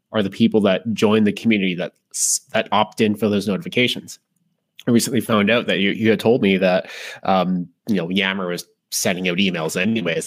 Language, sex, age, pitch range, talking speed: English, male, 20-39, 95-110 Hz, 200 wpm